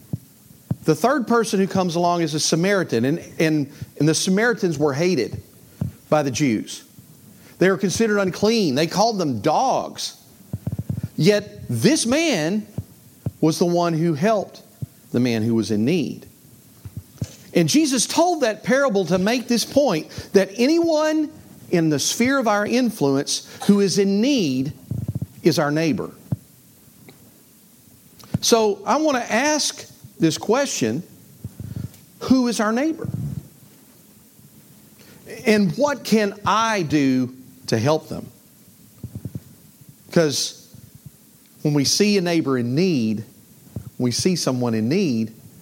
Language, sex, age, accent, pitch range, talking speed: English, male, 50-69, American, 135-215 Hz, 130 wpm